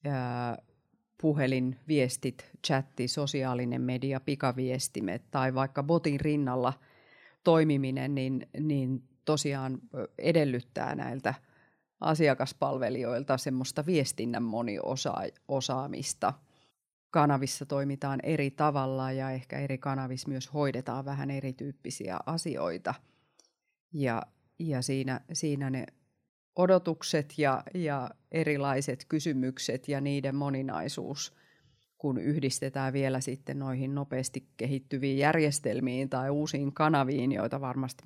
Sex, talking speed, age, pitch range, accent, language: female, 95 wpm, 30-49, 130-150 Hz, native, Finnish